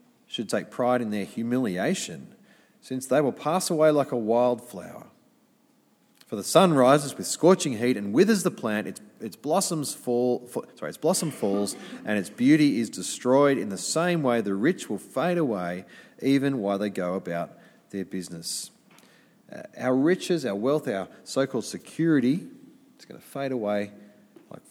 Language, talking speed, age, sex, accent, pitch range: English, 155 wpm, 30-49, male, Australian, 105-170 Hz